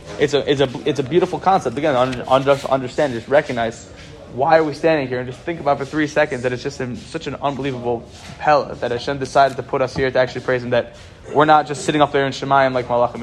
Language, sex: English, male